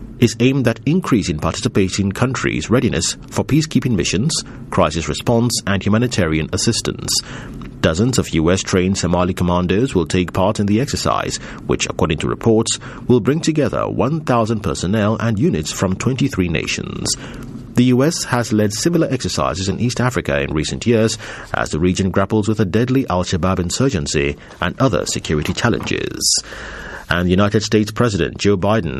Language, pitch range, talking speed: English, 90-120 Hz, 145 wpm